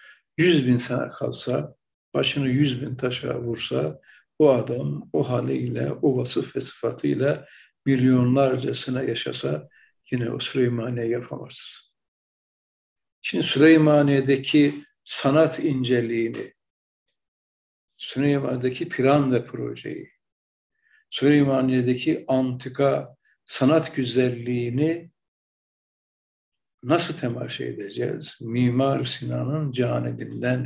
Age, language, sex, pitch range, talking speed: 60-79, Turkish, male, 125-145 Hz, 80 wpm